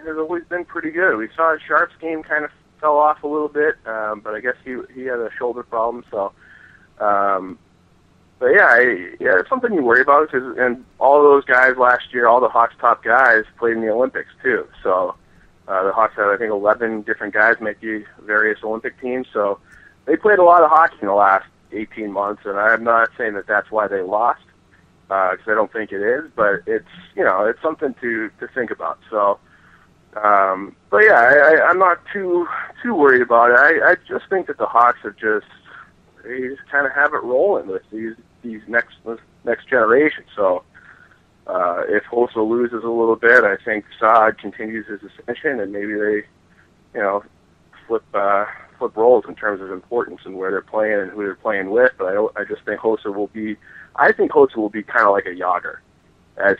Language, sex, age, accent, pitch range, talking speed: English, male, 30-49, American, 105-135 Hz, 210 wpm